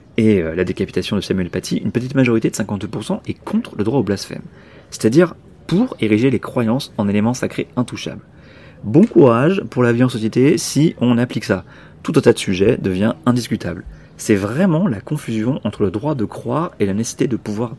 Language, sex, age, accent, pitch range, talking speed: French, male, 30-49, French, 100-130 Hz, 200 wpm